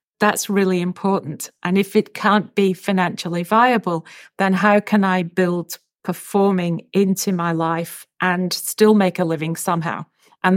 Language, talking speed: English, 150 wpm